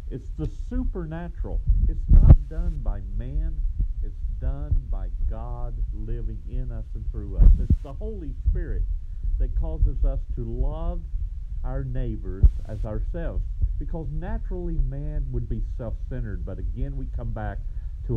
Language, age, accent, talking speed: English, 50-69, American, 140 wpm